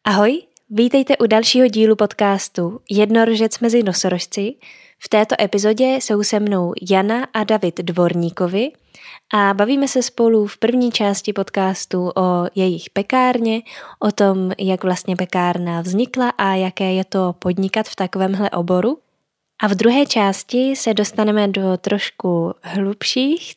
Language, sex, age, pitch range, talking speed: Czech, female, 10-29, 190-225 Hz, 135 wpm